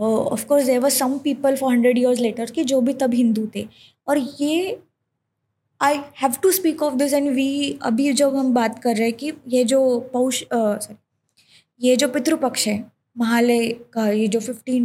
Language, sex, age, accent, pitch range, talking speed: Hindi, female, 20-39, native, 225-275 Hz, 190 wpm